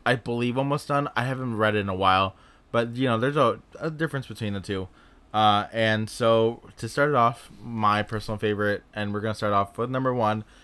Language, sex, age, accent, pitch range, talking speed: English, male, 20-39, American, 100-115 Hz, 220 wpm